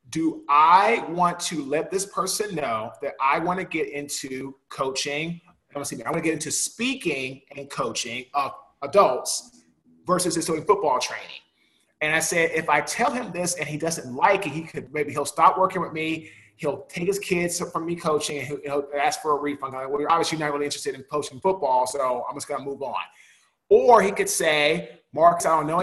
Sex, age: male, 30-49